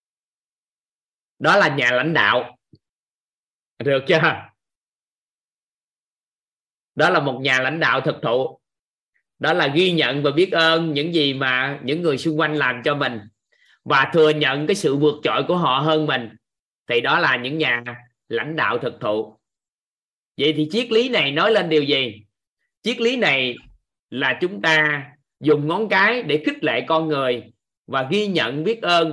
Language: Vietnamese